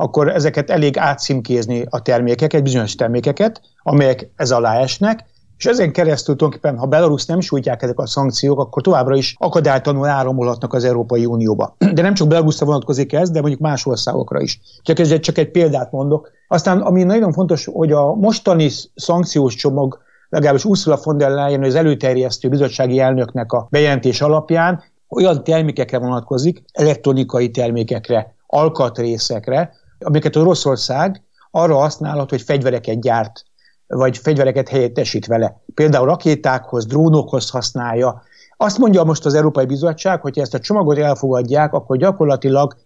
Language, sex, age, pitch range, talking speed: Hungarian, male, 60-79, 130-160 Hz, 145 wpm